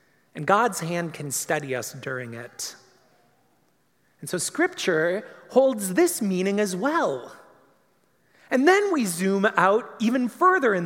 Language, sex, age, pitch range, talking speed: English, male, 30-49, 155-220 Hz, 135 wpm